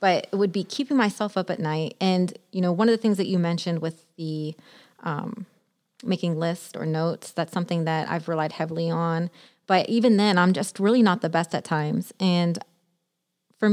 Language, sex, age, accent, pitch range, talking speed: English, female, 30-49, American, 170-205 Hz, 200 wpm